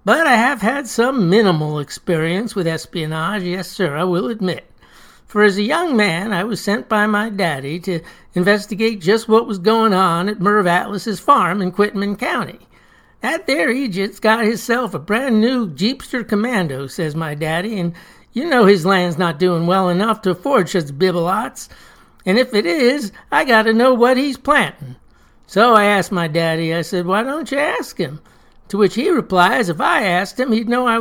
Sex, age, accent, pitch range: male, 60-79, American, 180-235 Hz